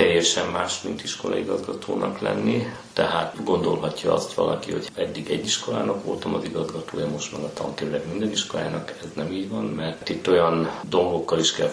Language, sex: Hungarian, male